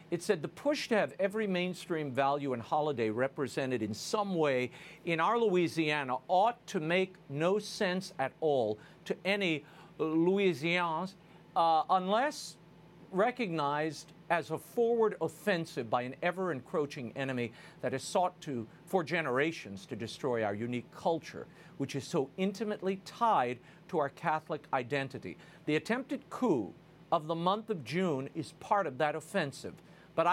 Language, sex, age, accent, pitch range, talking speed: English, male, 50-69, American, 140-185 Hz, 145 wpm